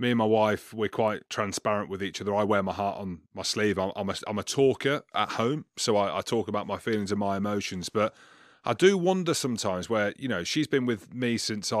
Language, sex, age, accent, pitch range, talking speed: English, male, 30-49, British, 100-120 Hz, 235 wpm